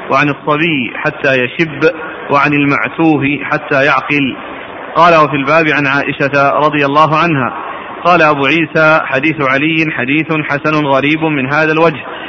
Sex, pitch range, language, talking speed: male, 145-165 Hz, Arabic, 130 wpm